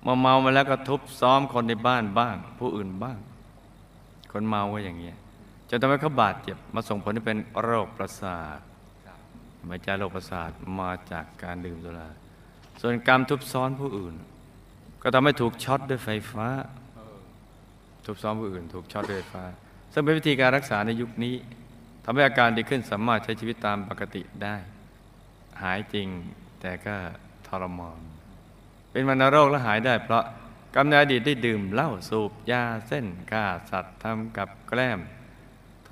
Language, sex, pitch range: Thai, male, 95-120 Hz